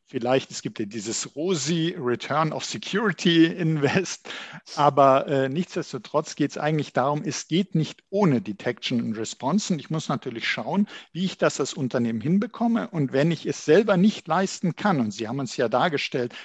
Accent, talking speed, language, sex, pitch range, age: German, 175 wpm, German, male, 135-180 Hz, 50-69